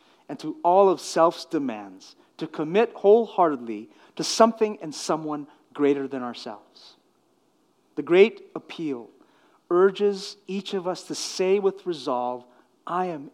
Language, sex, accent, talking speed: English, male, American, 130 wpm